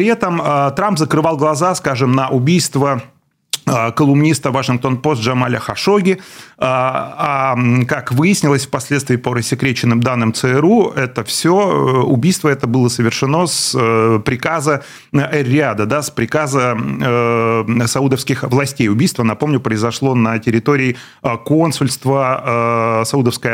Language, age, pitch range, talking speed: Russian, 30-49, 125-155 Hz, 110 wpm